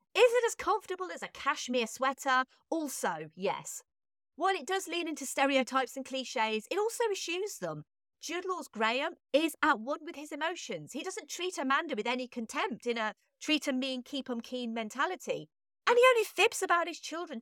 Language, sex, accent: English, female, British